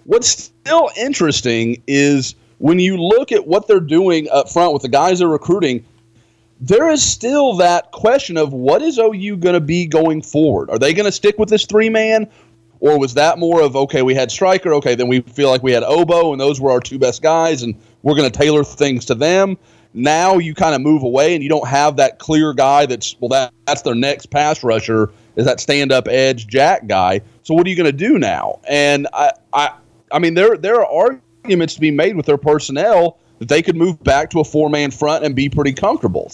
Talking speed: 225 wpm